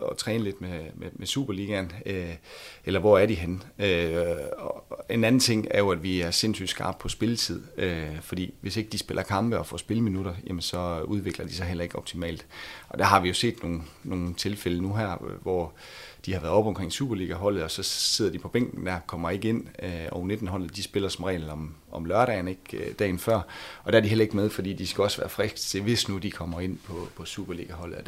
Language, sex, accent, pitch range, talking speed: Danish, male, native, 85-105 Hz, 235 wpm